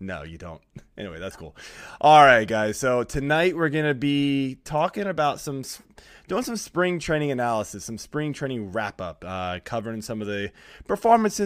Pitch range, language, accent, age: 100-140 Hz, English, American, 20-39